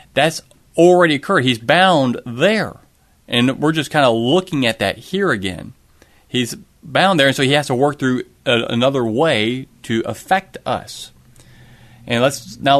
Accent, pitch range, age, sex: American, 120-160 Hz, 40-59, male